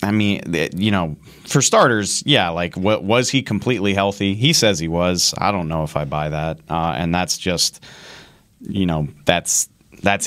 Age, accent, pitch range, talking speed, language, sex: 30-49, American, 85-100 Hz, 185 wpm, English, male